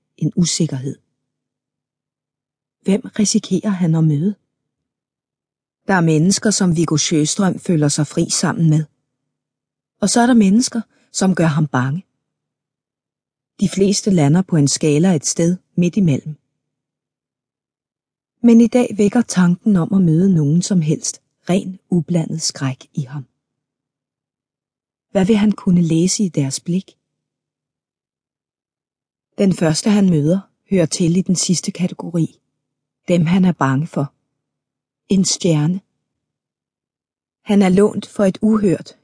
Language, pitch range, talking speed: Danish, 145-190 Hz, 130 wpm